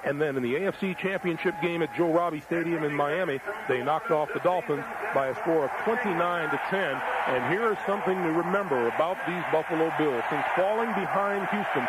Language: English